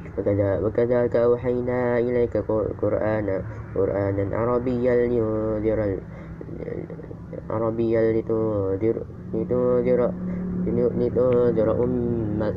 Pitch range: 105-120 Hz